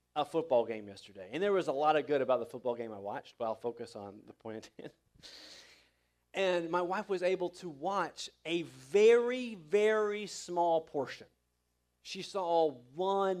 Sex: male